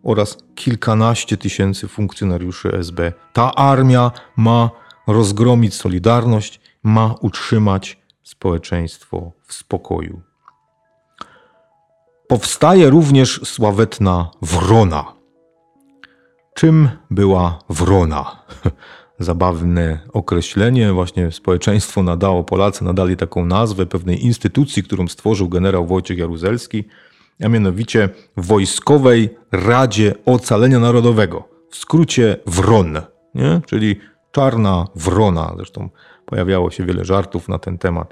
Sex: male